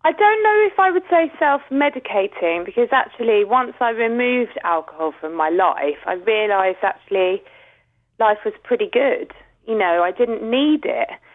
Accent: British